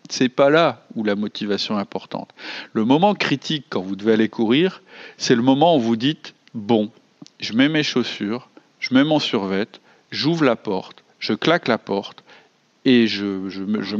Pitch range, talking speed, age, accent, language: 105-140 Hz, 190 wpm, 40-59, French, French